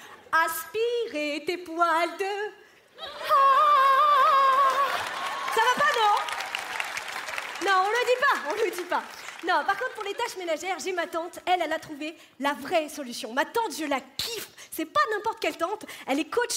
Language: French